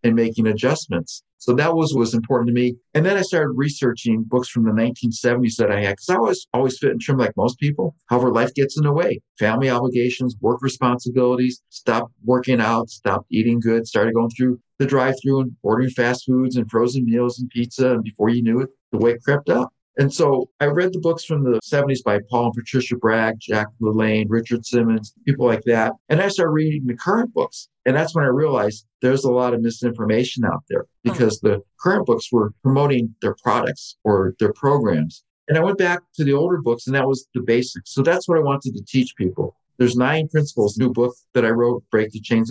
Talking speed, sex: 220 wpm, male